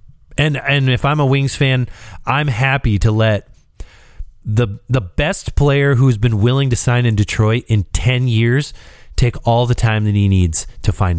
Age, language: 30-49, English